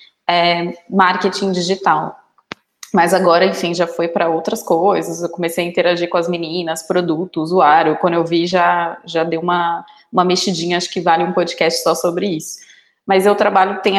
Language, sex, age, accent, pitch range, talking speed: Portuguese, female, 20-39, Brazilian, 180-210 Hz, 175 wpm